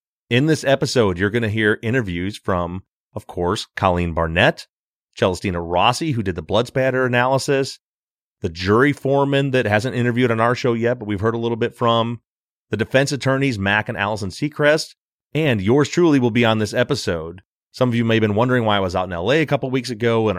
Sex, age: male, 30-49